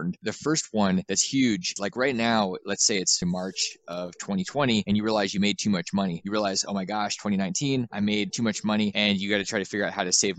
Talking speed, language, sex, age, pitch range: 260 wpm, English, male, 20-39, 95-120 Hz